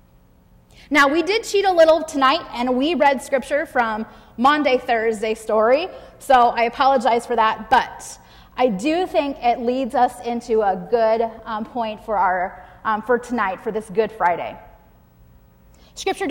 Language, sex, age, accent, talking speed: English, female, 30-49, American, 155 wpm